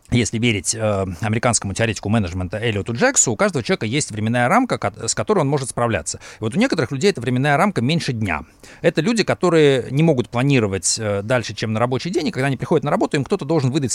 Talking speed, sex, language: 210 wpm, male, Russian